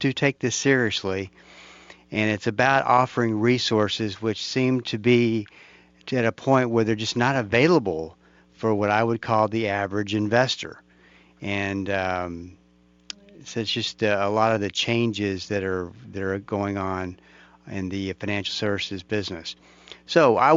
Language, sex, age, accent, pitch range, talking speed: English, male, 50-69, American, 100-120 Hz, 150 wpm